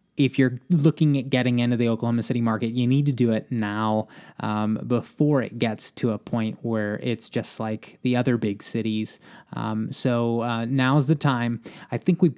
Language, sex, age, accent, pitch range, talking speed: English, male, 20-39, American, 115-155 Hz, 195 wpm